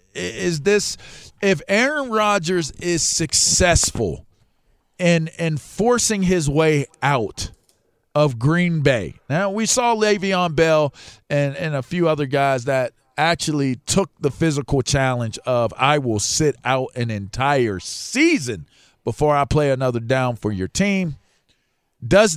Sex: male